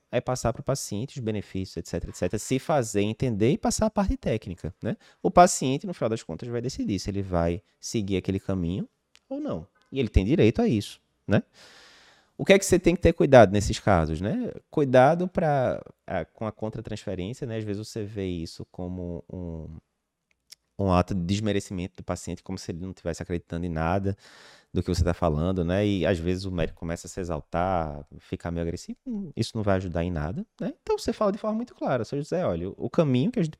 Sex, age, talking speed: male, 20-39, 215 wpm